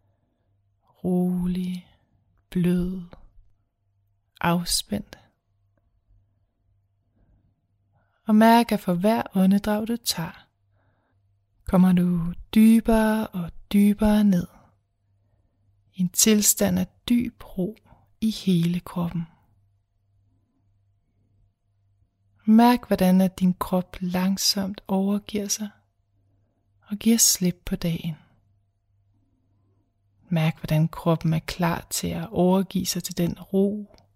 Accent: native